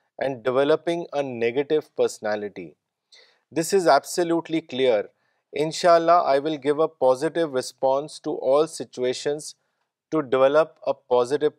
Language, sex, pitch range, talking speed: Urdu, male, 130-160 Hz, 120 wpm